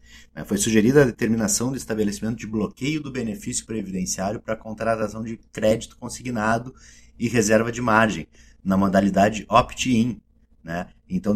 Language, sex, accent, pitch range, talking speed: Portuguese, male, Brazilian, 100-120 Hz, 125 wpm